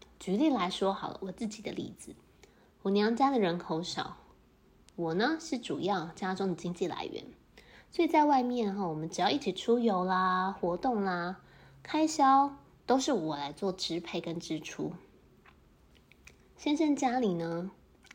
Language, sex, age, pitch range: Chinese, female, 20-39, 175-235 Hz